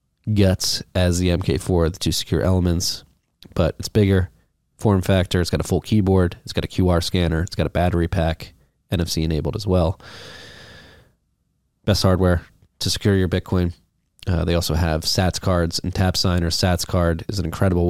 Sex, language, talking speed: male, English, 180 wpm